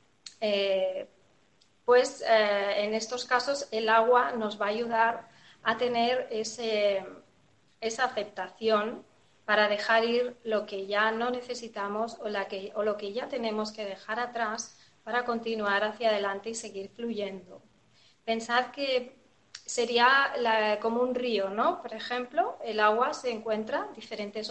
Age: 20-39